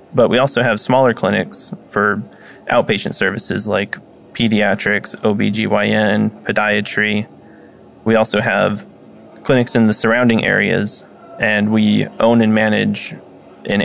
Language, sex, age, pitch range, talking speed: English, male, 20-39, 105-115 Hz, 115 wpm